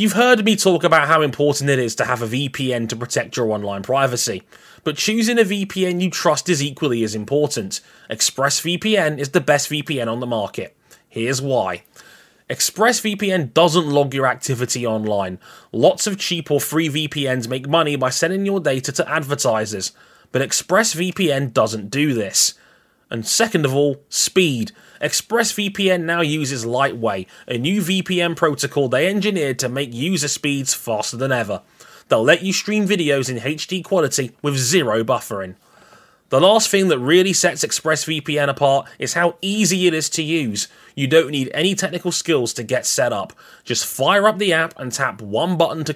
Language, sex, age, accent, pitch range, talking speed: English, male, 20-39, British, 130-185 Hz, 170 wpm